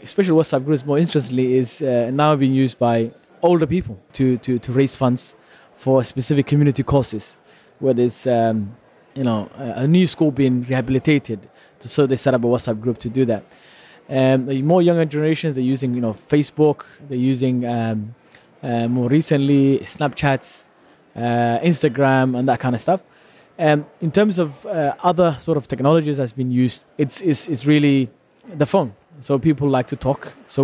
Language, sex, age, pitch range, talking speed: English, male, 20-39, 130-155 Hz, 180 wpm